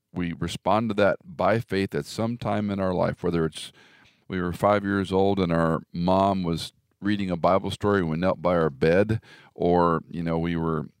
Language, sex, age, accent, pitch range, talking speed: English, male, 50-69, American, 85-115 Hz, 205 wpm